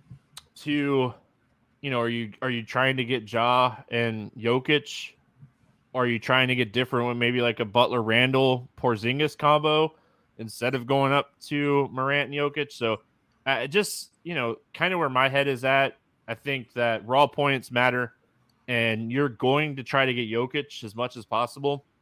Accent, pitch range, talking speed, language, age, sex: American, 115-145 Hz, 175 wpm, English, 20-39, male